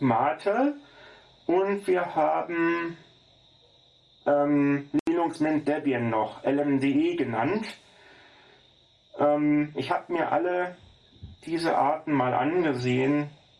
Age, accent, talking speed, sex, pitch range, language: 40-59, German, 90 wpm, male, 125-180 Hz, German